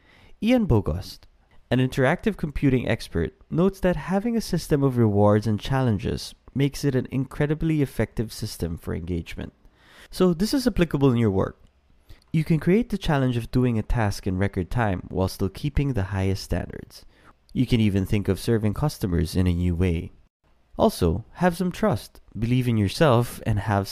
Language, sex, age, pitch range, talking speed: English, male, 20-39, 95-150 Hz, 170 wpm